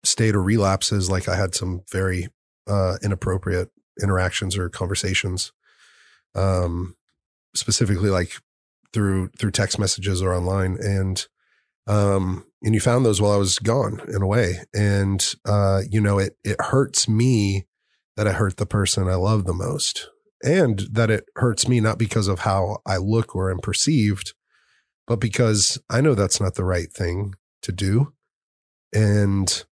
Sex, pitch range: male, 95-115 Hz